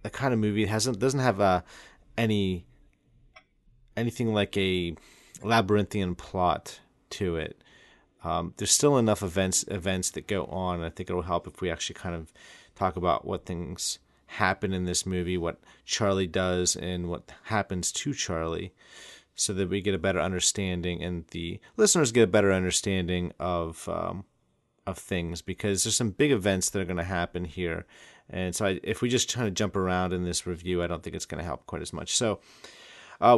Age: 30-49